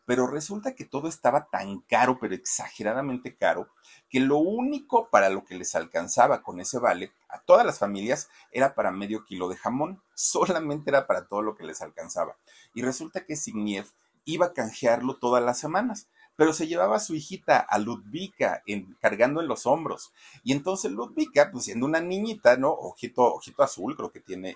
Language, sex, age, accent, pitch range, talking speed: Spanish, male, 40-59, Mexican, 110-160 Hz, 185 wpm